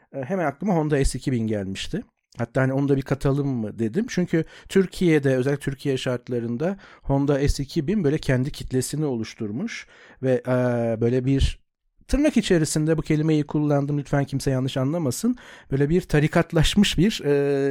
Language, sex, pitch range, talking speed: Turkish, male, 125-180 Hz, 140 wpm